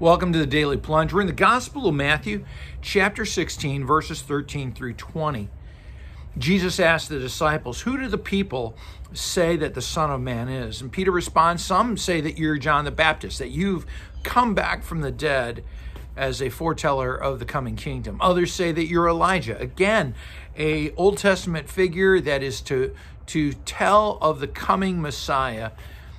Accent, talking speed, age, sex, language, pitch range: American, 170 wpm, 50-69, male, English, 120-170 Hz